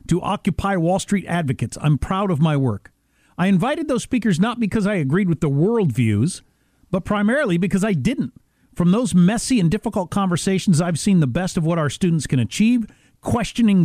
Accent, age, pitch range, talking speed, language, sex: American, 50-69, 150-205 Hz, 185 wpm, English, male